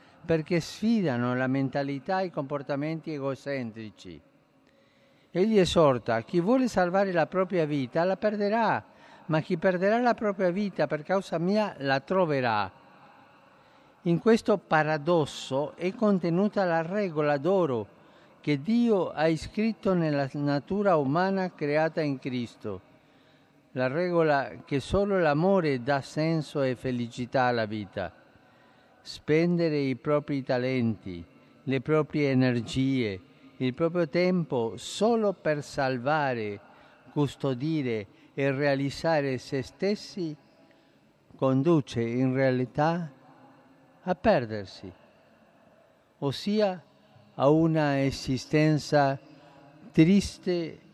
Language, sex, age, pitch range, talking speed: Italian, male, 50-69, 130-180 Hz, 100 wpm